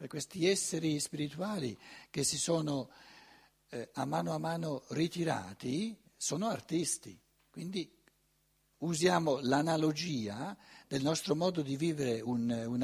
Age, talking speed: 60-79, 110 wpm